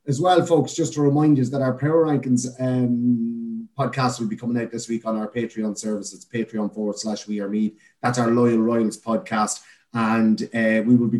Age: 30-49